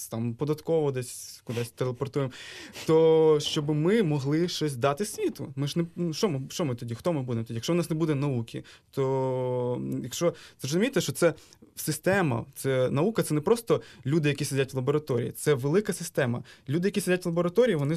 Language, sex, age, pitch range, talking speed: Ukrainian, male, 20-39, 130-165 Hz, 185 wpm